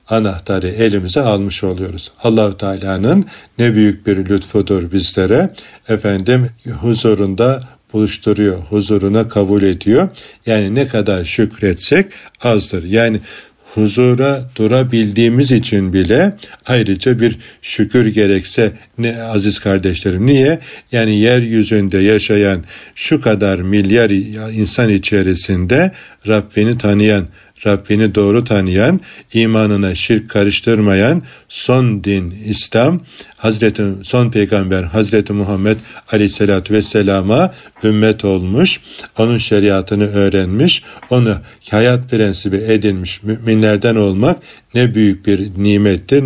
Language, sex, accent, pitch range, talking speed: Turkish, male, native, 100-115 Hz, 100 wpm